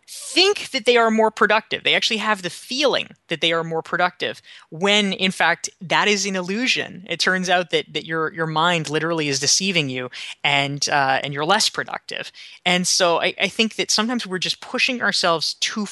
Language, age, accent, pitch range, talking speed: English, 20-39, American, 155-215 Hz, 200 wpm